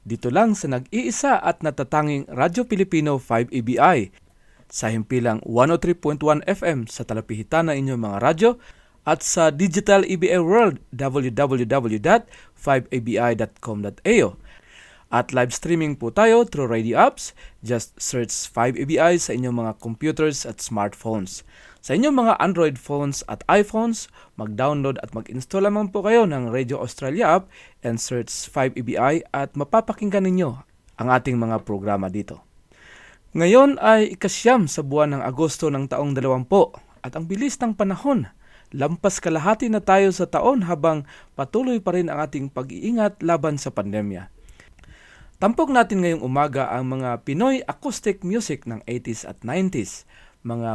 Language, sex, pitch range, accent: English, male, 120-195 Hz, Filipino